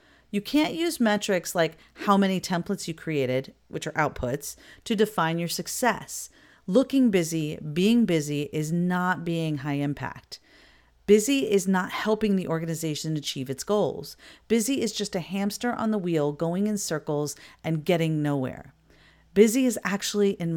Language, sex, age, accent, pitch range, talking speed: English, female, 40-59, American, 160-205 Hz, 155 wpm